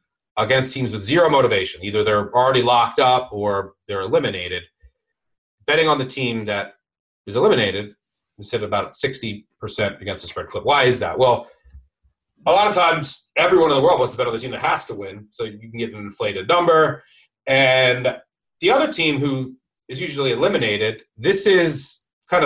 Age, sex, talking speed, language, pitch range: 30-49, male, 180 wpm, English, 110-140 Hz